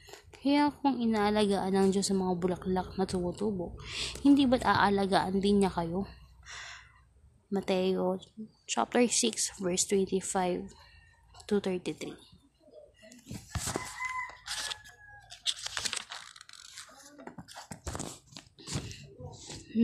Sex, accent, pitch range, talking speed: female, native, 185-220 Hz, 60 wpm